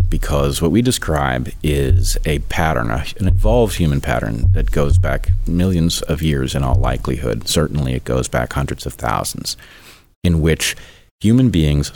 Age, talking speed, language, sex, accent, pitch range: 30-49, 155 wpm, English, male, American, 75-90 Hz